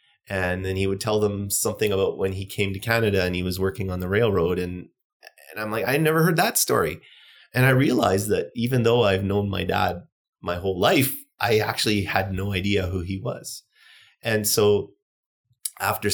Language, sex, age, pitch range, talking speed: English, male, 30-49, 95-110 Hz, 195 wpm